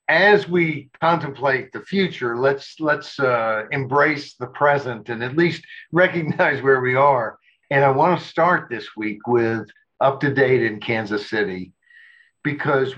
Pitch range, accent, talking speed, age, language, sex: 125-165 Hz, American, 155 wpm, 60-79, English, male